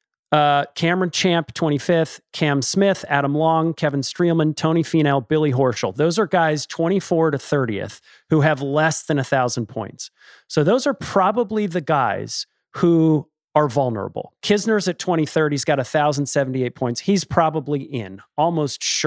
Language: English